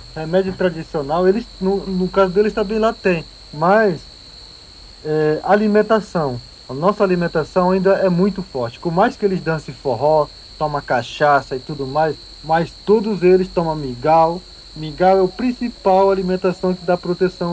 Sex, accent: male, Brazilian